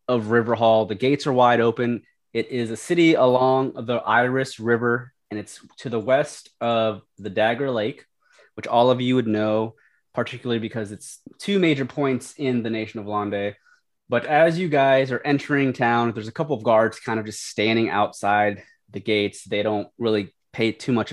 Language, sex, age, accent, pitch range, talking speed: English, male, 20-39, American, 105-125 Hz, 190 wpm